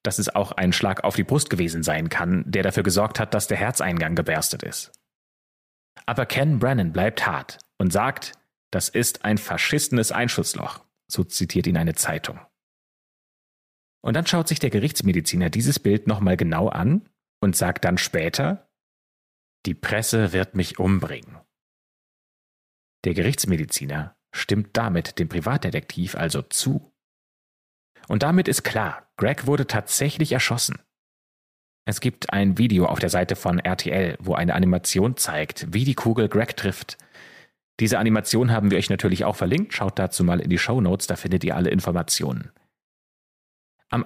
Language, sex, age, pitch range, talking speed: German, male, 30-49, 90-125 Hz, 150 wpm